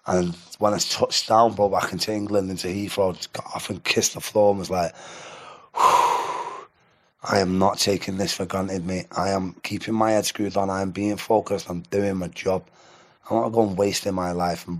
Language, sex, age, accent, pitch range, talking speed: English, male, 20-39, British, 90-110 Hz, 210 wpm